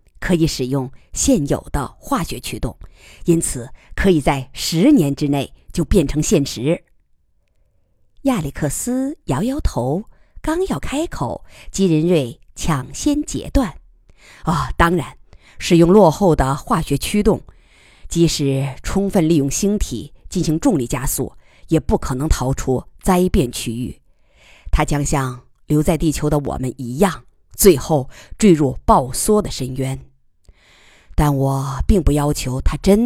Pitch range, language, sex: 130-185 Hz, Chinese, female